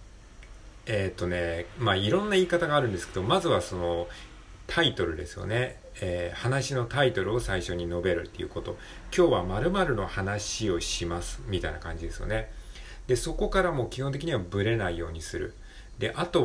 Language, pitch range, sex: Japanese, 95-140 Hz, male